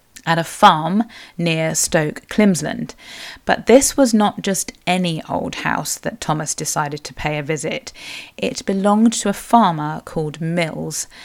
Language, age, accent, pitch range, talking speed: English, 30-49, British, 160-210 Hz, 150 wpm